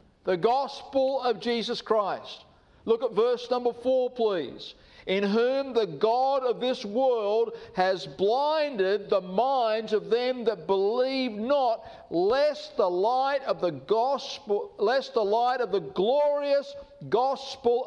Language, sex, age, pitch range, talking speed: English, male, 50-69, 220-290 Hz, 135 wpm